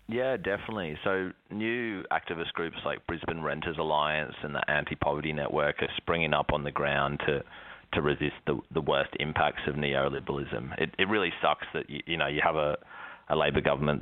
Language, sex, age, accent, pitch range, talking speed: English, male, 30-49, Australian, 70-75 Hz, 185 wpm